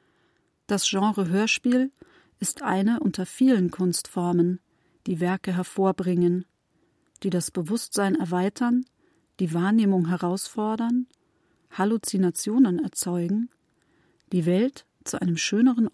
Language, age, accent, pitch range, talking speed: German, 40-59, German, 180-220 Hz, 90 wpm